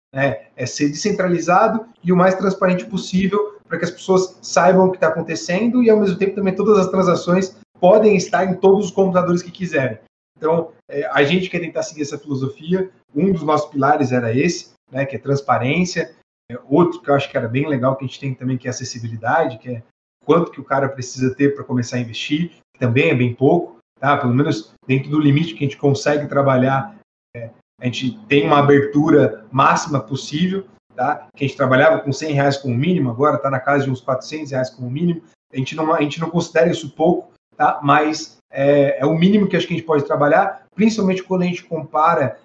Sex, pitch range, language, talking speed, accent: male, 135-170 Hz, Portuguese, 210 wpm, Brazilian